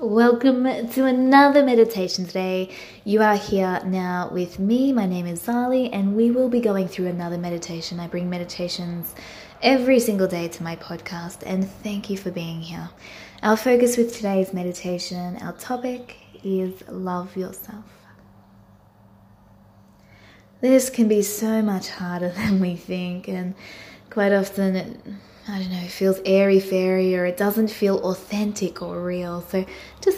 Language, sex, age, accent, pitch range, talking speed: English, female, 20-39, Australian, 175-235 Hz, 155 wpm